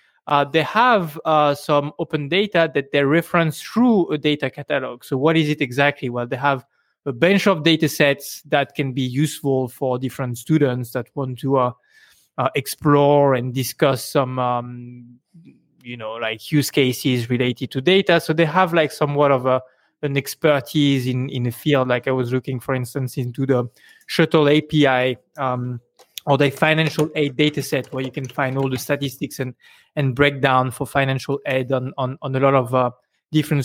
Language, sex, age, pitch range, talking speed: English, male, 20-39, 130-160 Hz, 185 wpm